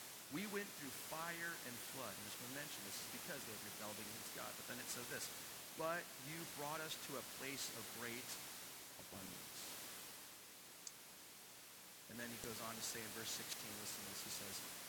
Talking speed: 195 wpm